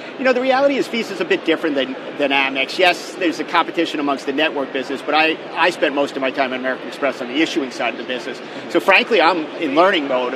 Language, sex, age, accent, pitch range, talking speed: English, male, 50-69, American, 135-160 Hz, 255 wpm